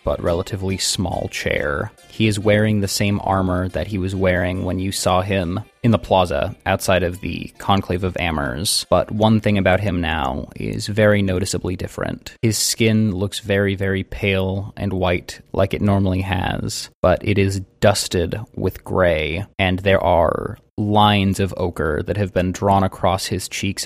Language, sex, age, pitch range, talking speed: English, male, 20-39, 90-105 Hz, 170 wpm